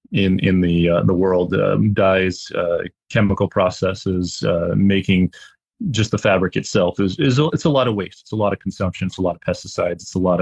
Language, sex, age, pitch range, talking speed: English, male, 30-49, 90-105 Hz, 225 wpm